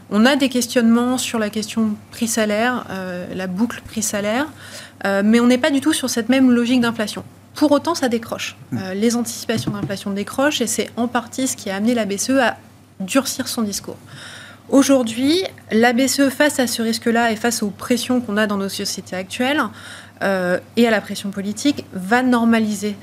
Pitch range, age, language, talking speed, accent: 205-255 Hz, 30-49, French, 180 wpm, French